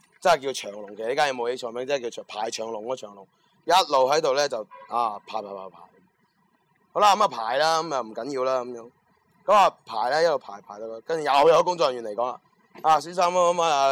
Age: 30-49